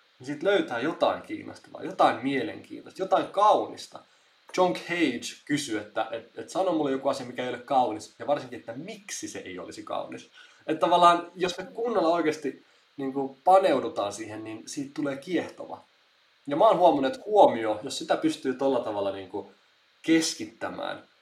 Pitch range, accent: 120-180 Hz, native